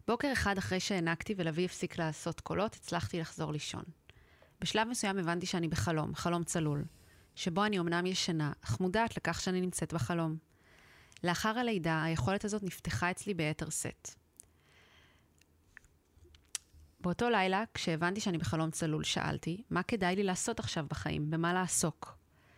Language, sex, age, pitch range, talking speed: Hebrew, female, 30-49, 160-190 Hz, 135 wpm